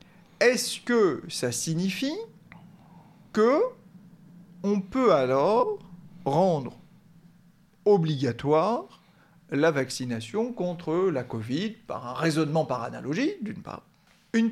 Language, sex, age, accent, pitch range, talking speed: French, male, 40-59, French, 160-210 Hz, 95 wpm